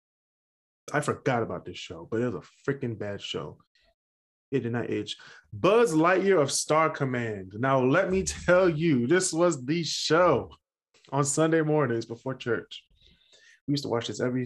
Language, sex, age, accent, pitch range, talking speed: English, male, 20-39, American, 115-155 Hz, 170 wpm